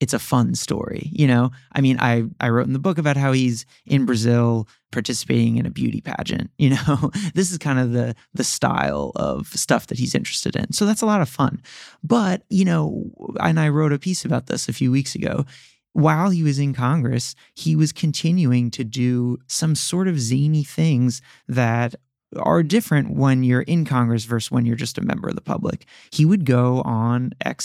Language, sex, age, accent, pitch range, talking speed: English, male, 30-49, American, 120-155 Hz, 205 wpm